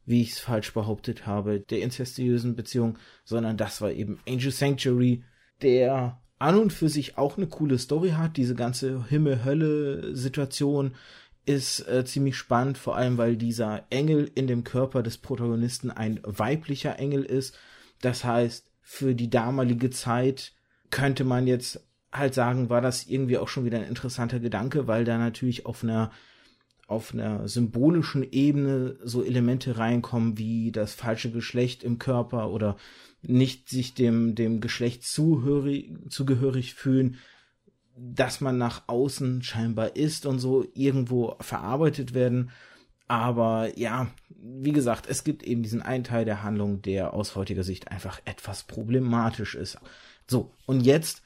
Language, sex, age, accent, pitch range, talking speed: German, male, 20-39, German, 115-135 Hz, 150 wpm